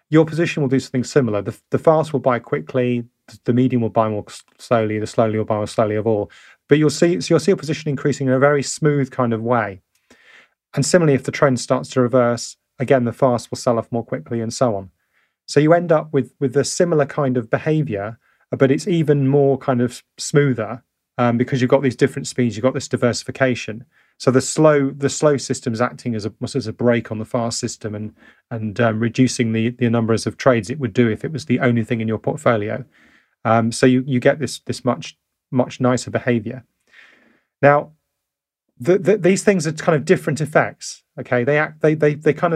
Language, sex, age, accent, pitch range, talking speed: English, male, 30-49, British, 120-150 Hz, 220 wpm